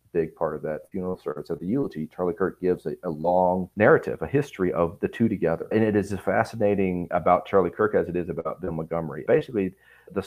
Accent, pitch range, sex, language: American, 90-105 Hz, male, English